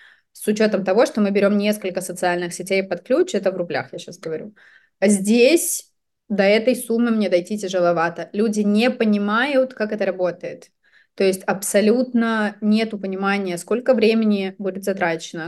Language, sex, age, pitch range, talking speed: Russian, female, 20-39, 195-240 Hz, 150 wpm